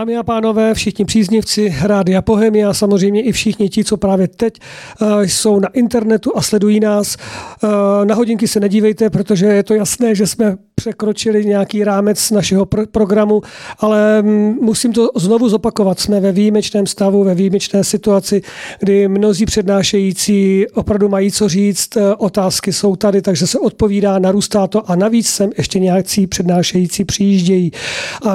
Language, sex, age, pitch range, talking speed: Czech, male, 40-59, 190-215 Hz, 150 wpm